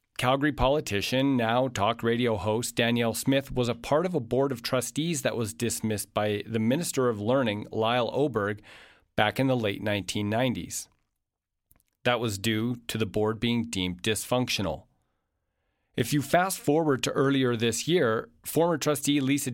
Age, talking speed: 40-59, 155 wpm